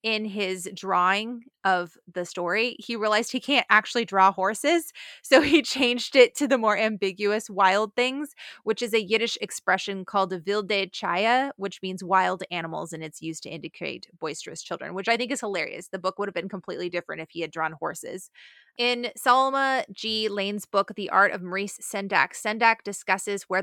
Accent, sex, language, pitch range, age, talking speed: American, female, English, 185-220 Hz, 20-39, 185 wpm